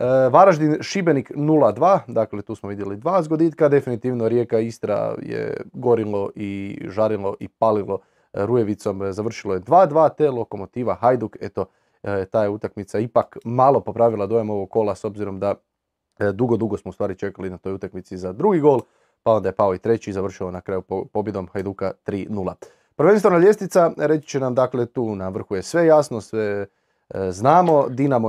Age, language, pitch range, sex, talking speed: 20-39, Croatian, 100-135 Hz, male, 160 wpm